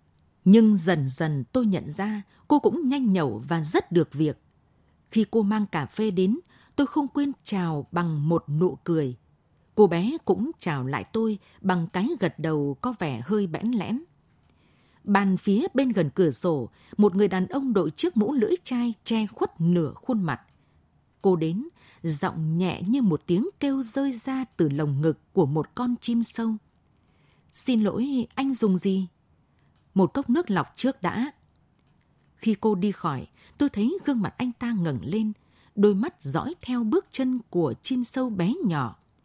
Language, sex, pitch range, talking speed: Vietnamese, female, 165-235 Hz, 175 wpm